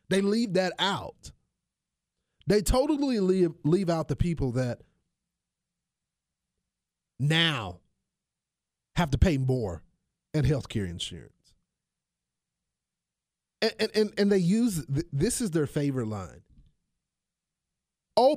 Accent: American